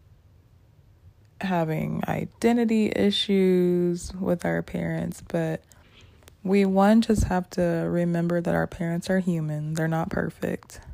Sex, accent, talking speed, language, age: female, American, 115 wpm, English, 20-39